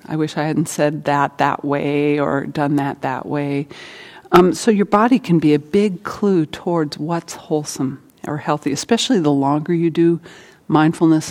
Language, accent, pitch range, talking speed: English, American, 150-195 Hz, 175 wpm